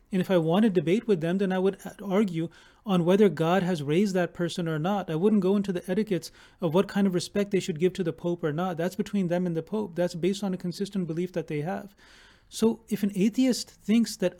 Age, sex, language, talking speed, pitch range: 30-49, male, English, 255 wpm, 175-205 Hz